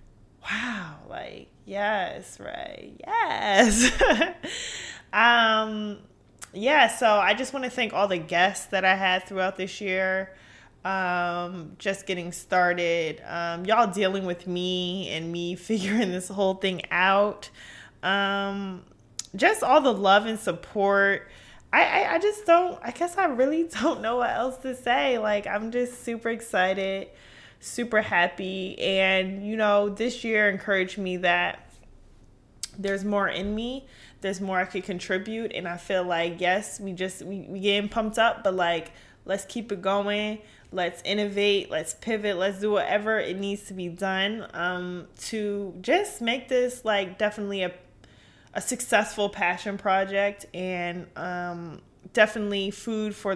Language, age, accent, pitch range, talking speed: English, 20-39, American, 185-220 Hz, 145 wpm